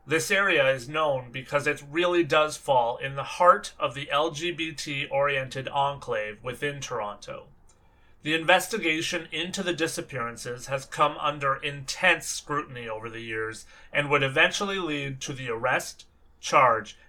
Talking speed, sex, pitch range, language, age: 135 wpm, male, 135-165 Hz, English, 30-49